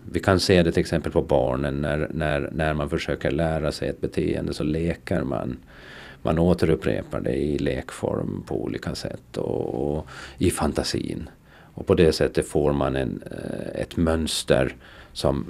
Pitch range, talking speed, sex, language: 75-95 Hz, 165 wpm, male, Swedish